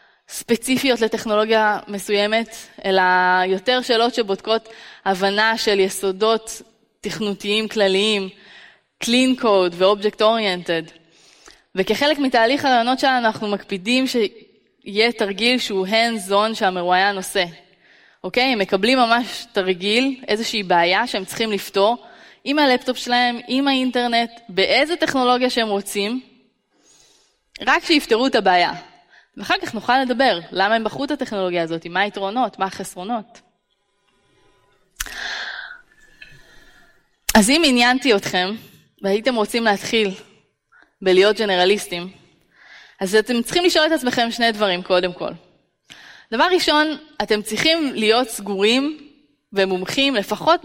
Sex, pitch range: female, 195-250 Hz